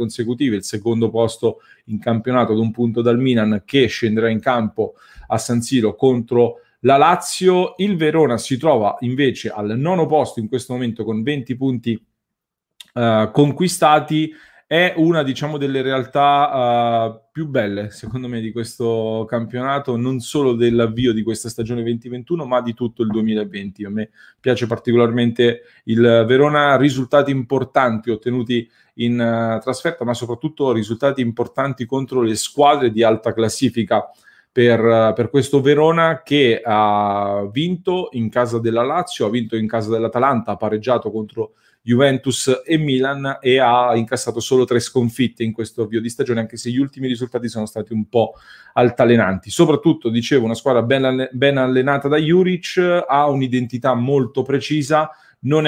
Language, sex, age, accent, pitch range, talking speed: English, male, 30-49, Italian, 115-140 Hz, 150 wpm